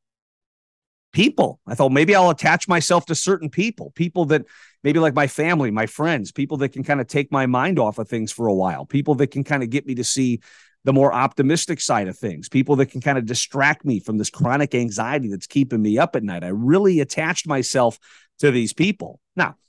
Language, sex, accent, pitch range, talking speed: English, male, American, 120-170 Hz, 220 wpm